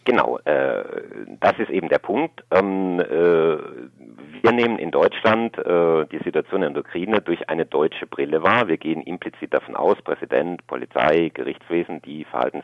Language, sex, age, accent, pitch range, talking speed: German, male, 50-69, German, 80-120 Hz, 160 wpm